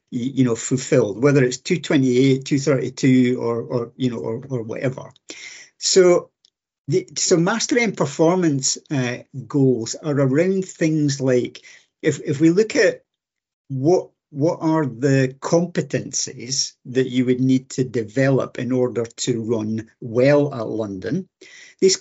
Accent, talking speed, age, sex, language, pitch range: British, 140 wpm, 50-69, male, English, 130-165 Hz